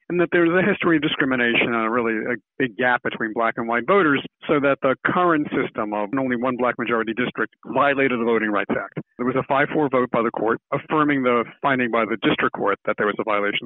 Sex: male